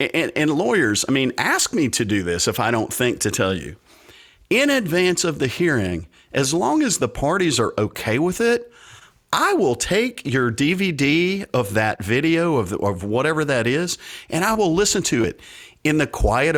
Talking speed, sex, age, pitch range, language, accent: 190 wpm, male, 50-69, 105-155 Hz, English, American